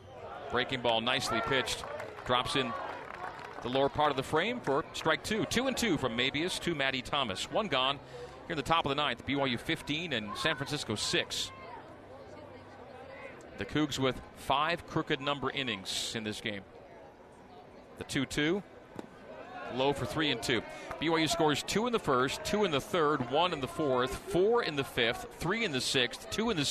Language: English